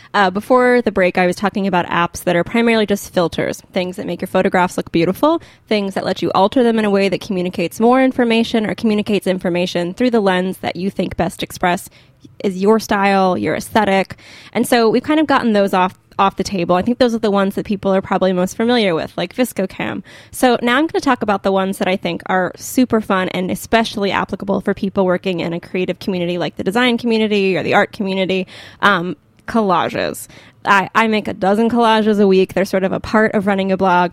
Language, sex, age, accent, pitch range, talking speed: English, female, 10-29, American, 185-225 Hz, 225 wpm